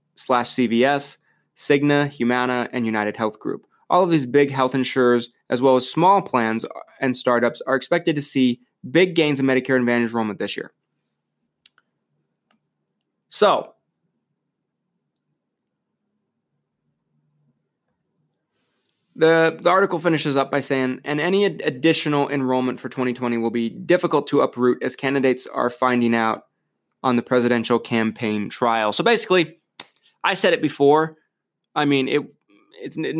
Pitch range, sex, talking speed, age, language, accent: 120-155 Hz, male, 130 wpm, 20-39, English, American